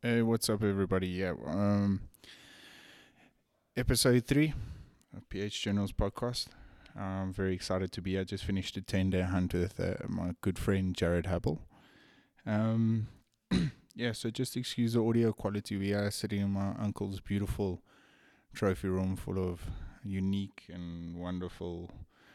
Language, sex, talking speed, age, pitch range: English, male, 150 wpm, 20-39, 90-105 Hz